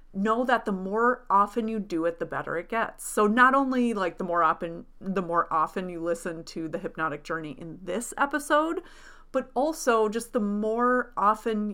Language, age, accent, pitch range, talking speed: English, 30-49, American, 185-240 Hz, 190 wpm